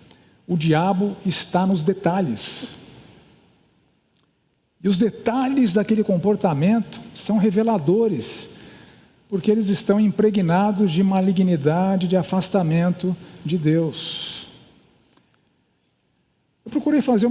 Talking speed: 85 wpm